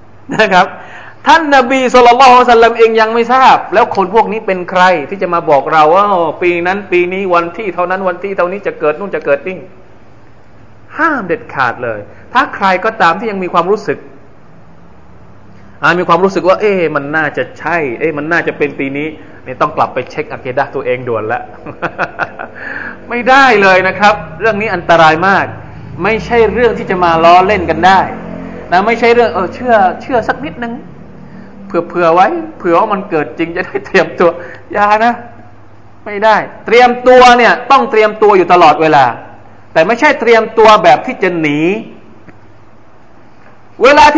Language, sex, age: Thai, male, 20-39